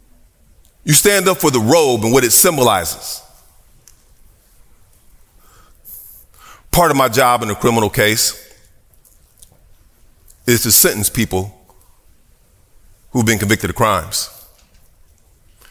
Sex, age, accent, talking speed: male, 40-59, American, 105 wpm